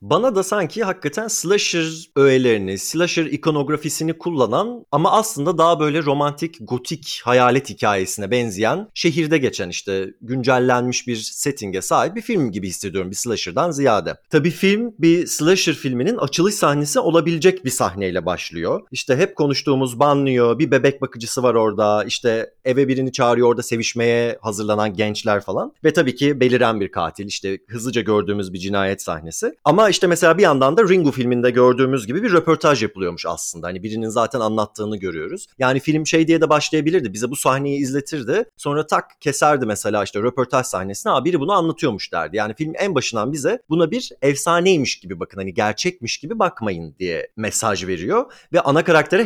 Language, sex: Turkish, male